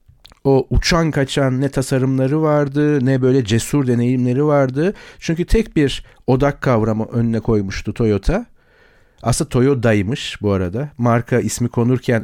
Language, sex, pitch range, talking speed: Turkish, male, 115-150 Hz, 125 wpm